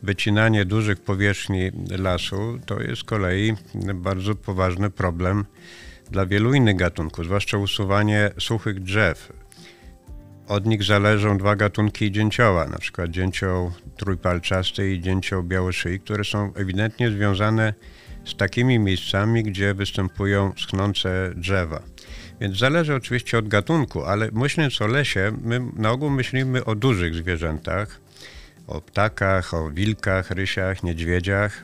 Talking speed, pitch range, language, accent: 125 wpm, 95-110 Hz, Polish, native